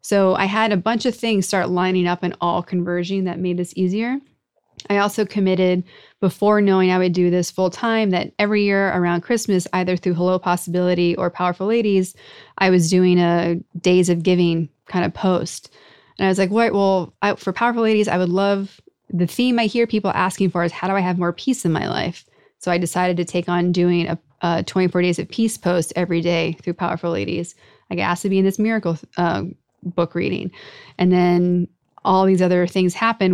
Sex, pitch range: female, 175-205 Hz